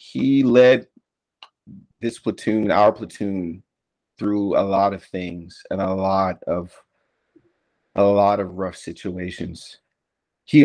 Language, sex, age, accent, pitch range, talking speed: English, male, 40-59, American, 90-110 Hz, 120 wpm